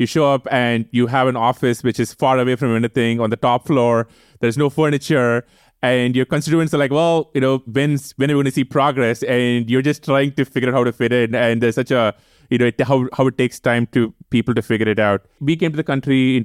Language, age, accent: English, 20-39, Indian